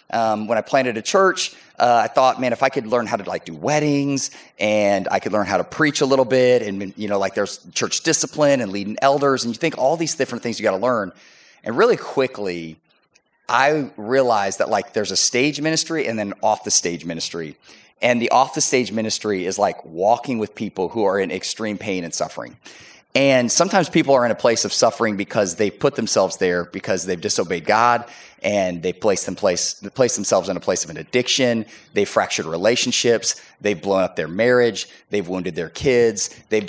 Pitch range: 100-130 Hz